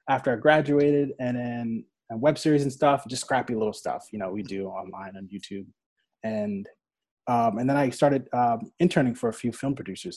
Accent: American